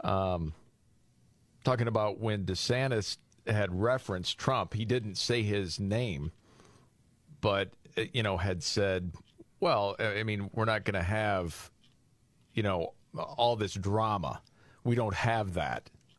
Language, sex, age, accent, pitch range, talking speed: English, male, 40-59, American, 95-120 Hz, 130 wpm